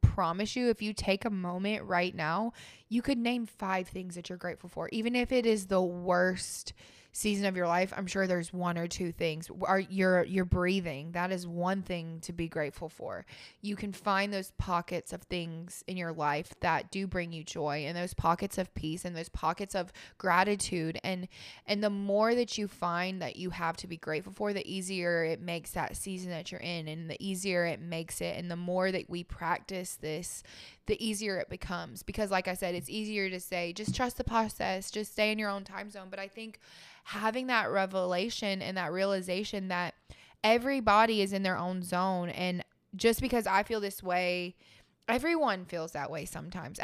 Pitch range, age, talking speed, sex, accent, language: 175-205 Hz, 20-39, 205 wpm, female, American, English